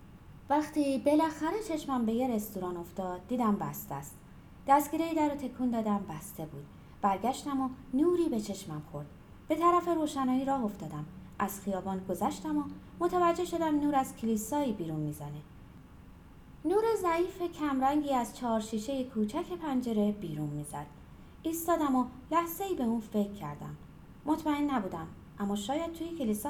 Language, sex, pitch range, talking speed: Persian, female, 200-295 Hz, 140 wpm